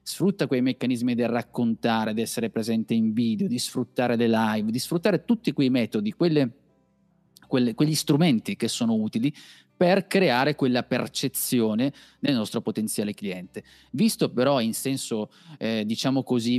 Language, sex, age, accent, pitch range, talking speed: Italian, male, 30-49, native, 115-150 Hz, 140 wpm